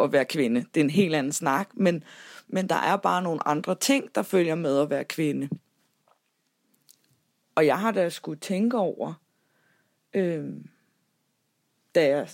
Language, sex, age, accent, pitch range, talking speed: Danish, female, 20-39, native, 160-200 Hz, 155 wpm